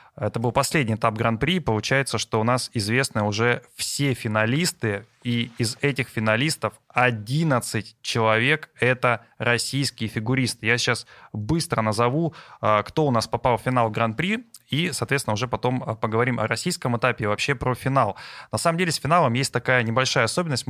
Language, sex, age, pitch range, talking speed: Russian, male, 20-39, 110-130 Hz, 160 wpm